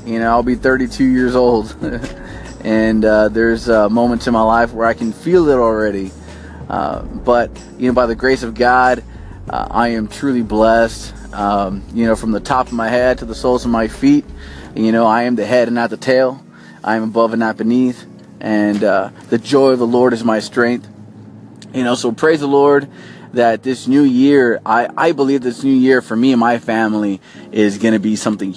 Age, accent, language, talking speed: 20-39, American, English, 210 wpm